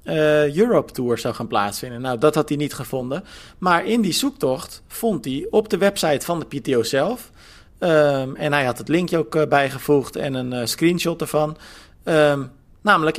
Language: Dutch